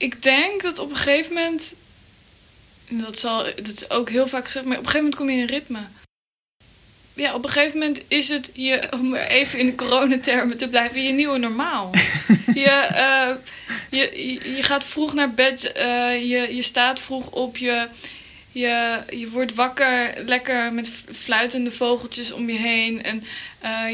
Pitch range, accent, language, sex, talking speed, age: 230-260 Hz, Dutch, Dutch, female, 180 wpm, 20-39